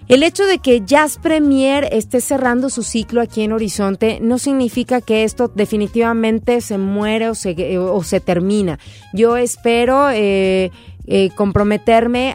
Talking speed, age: 145 wpm, 30-49